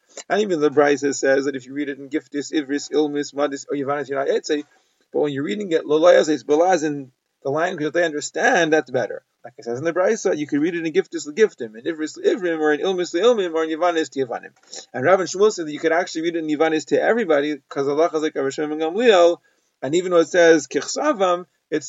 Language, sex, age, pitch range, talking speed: English, male, 30-49, 145-180 Hz, 240 wpm